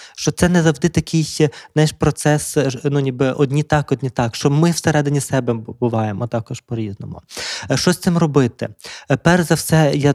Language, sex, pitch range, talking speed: Ukrainian, male, 125-155 Hz, 165 wpm